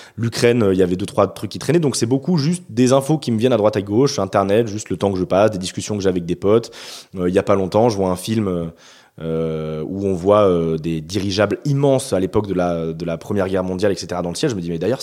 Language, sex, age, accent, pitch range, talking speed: French, male, 20-39, French, 90-115 Hz, 290 wpm